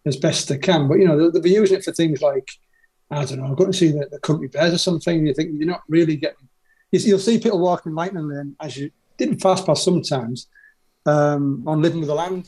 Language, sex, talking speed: English, male, 250 wpm